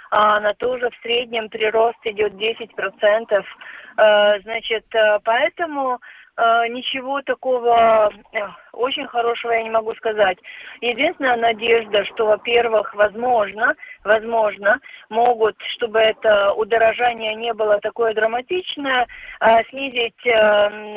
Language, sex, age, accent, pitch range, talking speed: Russian, female, 30-49, native, 210-245 Hz, 100 wpm